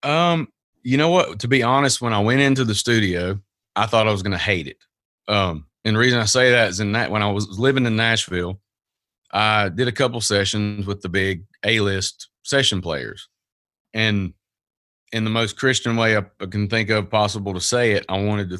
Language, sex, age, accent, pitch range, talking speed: English, male, 30-49, American, 95-110 Hz, 210 wpm